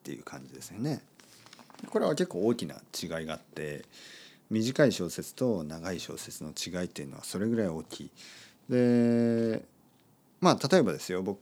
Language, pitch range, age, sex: Japanese, 90-145 Hz, 40-59, male